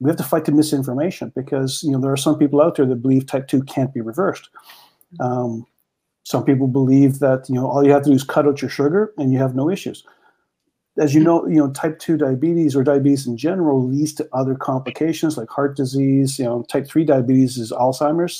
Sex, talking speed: male, 230 wpm